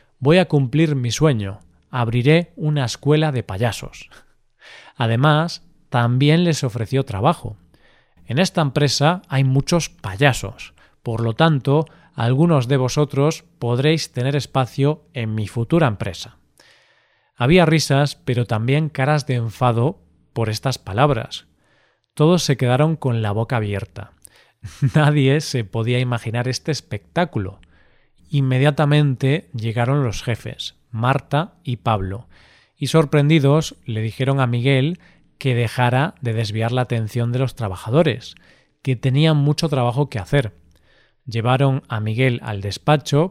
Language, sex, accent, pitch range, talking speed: Spanish, male, Spanish, 115-145 Hz, 125 wpm